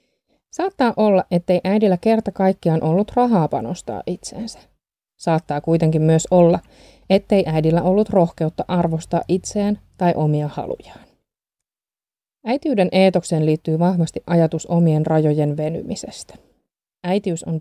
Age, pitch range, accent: 20-39, 160-200 Hz, native